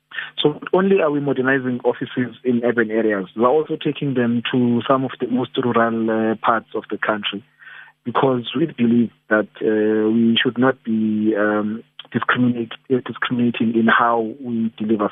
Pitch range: 110-125 Hz